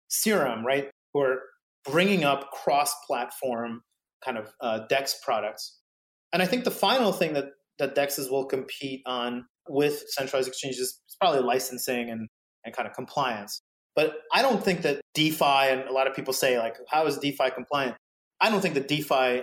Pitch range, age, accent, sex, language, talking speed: 130-155 Hz, 30-49, American, male, English, 180 wpm